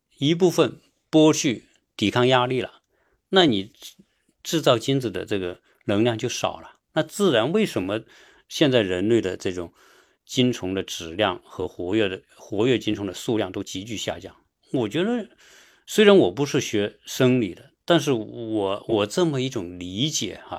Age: 50-69